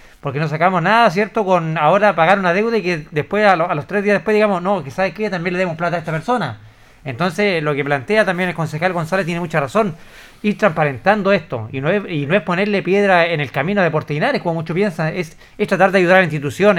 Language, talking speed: Spanish, 245 wpm